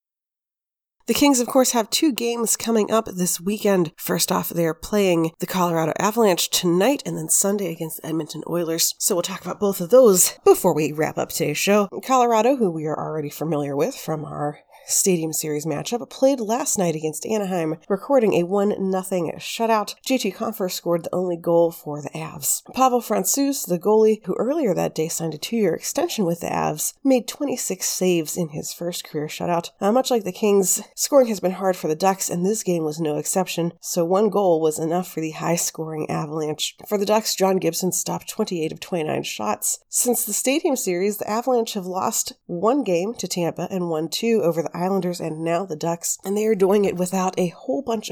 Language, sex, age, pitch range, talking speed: English, female, 30-49, 165-215 Hz, 205 wpm